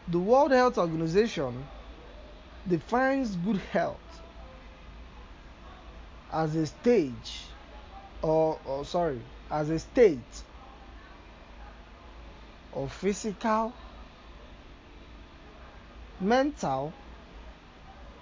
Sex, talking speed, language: male, 65 wpm, English